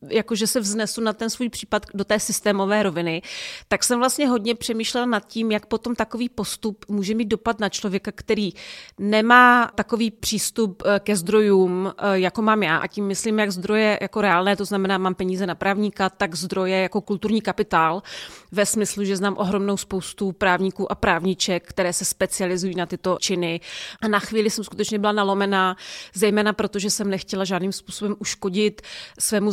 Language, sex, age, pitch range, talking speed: Czech, female, 30-49, 175-210 Hz, 170 wpm